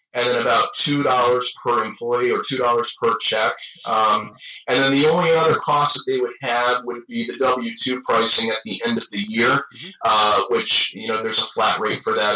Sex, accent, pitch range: male, American, 120-160 Hz